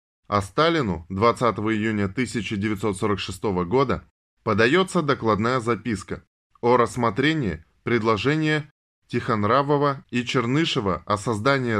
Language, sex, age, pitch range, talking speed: Russian, male, 20-39, 105-140 Hz, 85 wpm